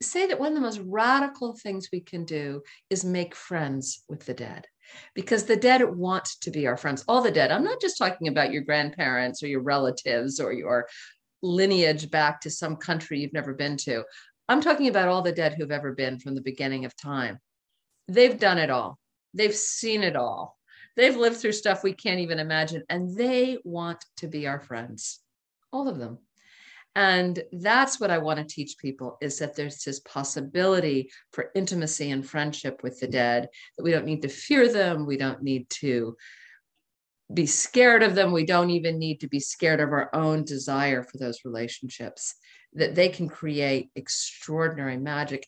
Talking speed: 190 wpm